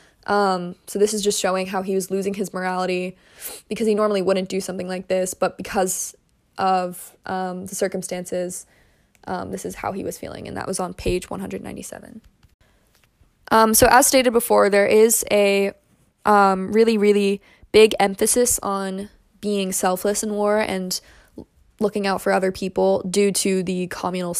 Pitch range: 185-210 Hz